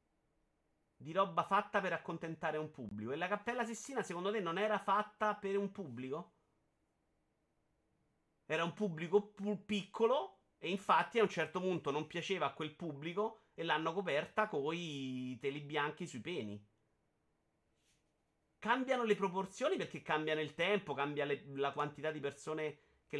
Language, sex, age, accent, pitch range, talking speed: Italian, male, 30-49, native, 125-175 Hz, 150 wpm